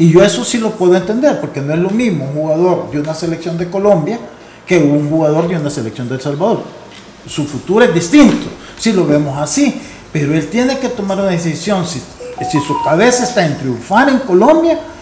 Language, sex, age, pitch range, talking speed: Spanish, male, 50-69, 160-215 Hz, 210 wpm